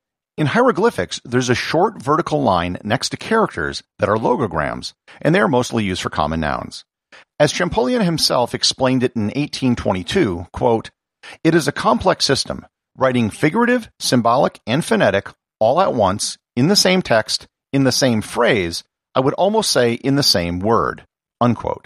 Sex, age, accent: male, 50-69, American